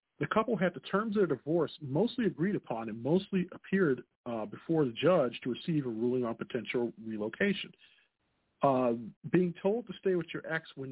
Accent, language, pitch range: American, English, 135-190 Hz